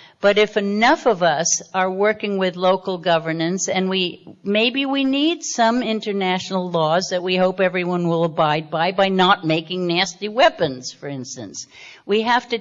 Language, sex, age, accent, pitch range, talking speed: English, female, 60-79, American, 160-195 Hz, 165 wpm